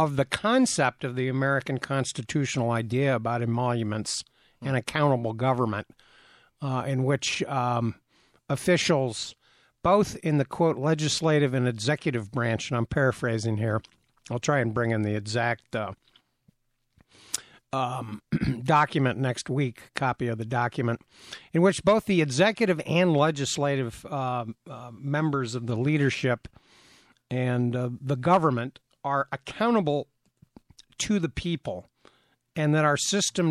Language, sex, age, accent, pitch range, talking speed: English, male, 60-79, American, 125-160 Hz, 130 wpm